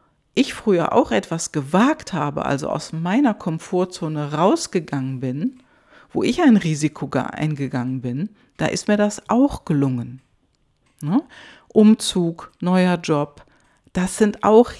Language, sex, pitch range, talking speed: German, female, 150-215 Hz, 120 wpm